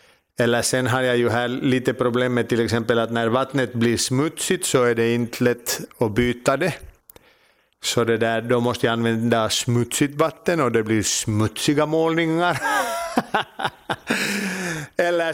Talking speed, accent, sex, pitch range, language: 145 wpm, Finnish, male, 120-145 Hz, Swedish